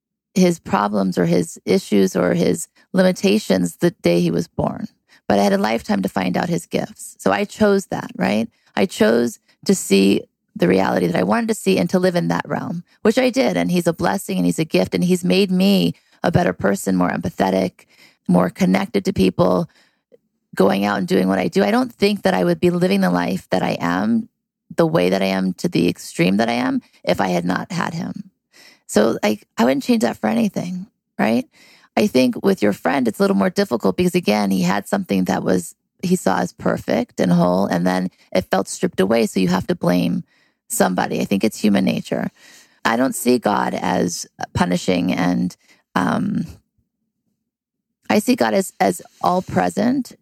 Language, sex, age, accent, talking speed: English, female, 30-49, American, 205 wpm